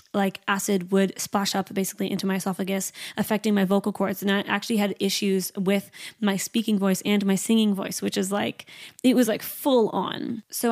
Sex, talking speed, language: female, 195 wpm, English